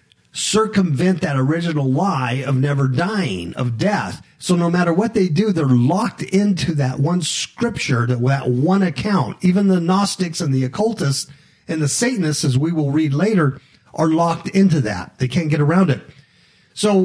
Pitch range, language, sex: 130-180 Hz, English, male